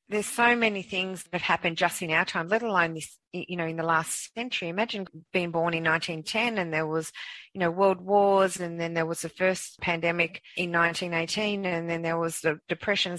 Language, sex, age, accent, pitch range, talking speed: English, female, 40-59, Australian, 165-190 Hz, 225 wpm